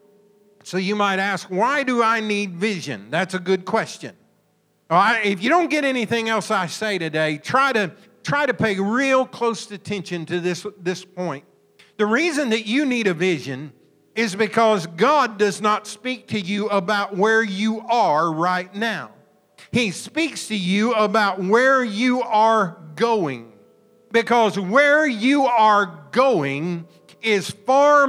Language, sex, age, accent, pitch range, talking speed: English, male, 50-69, American, 200-260 Hz, 155 wpm